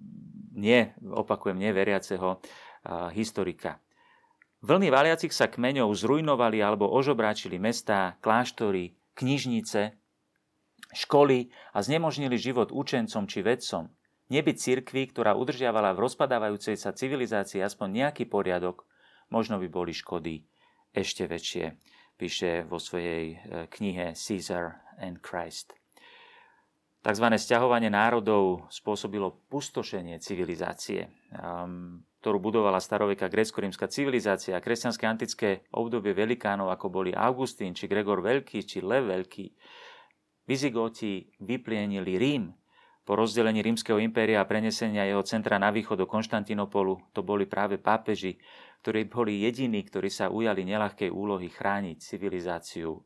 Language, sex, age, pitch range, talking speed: Slovak, male, 40-59, 95-120 Hz, 115 wpm